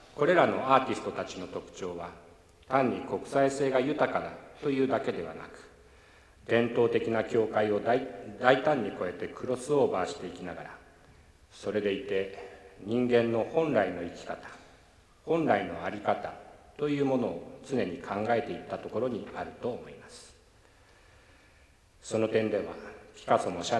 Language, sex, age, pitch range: Japanese, male, 50-69, 90-125 Hz